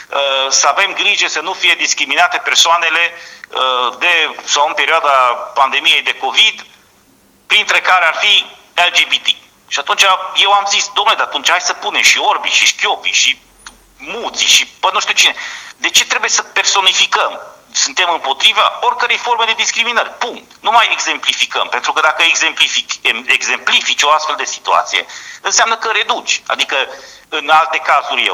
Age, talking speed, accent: 40-59, 160 wpm, native